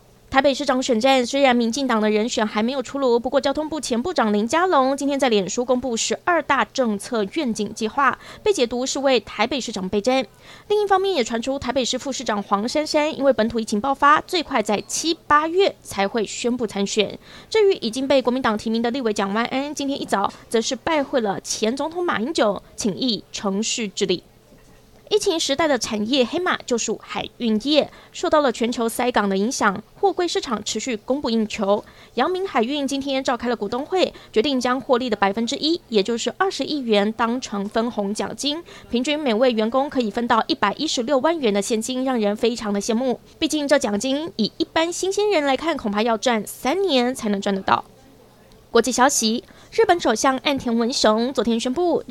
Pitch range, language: 220-280 Hz, Chinese